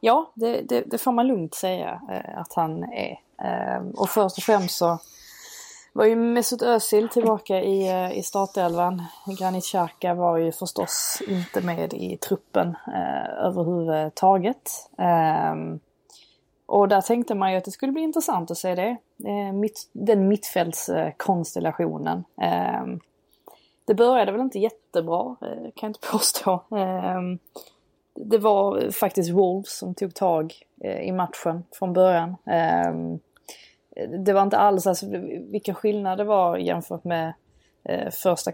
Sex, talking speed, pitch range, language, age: female, 125 wpm, 170-205 Hz, Swedish, 20-39